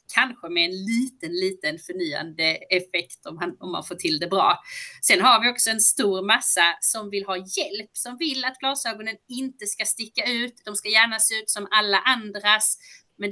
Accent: native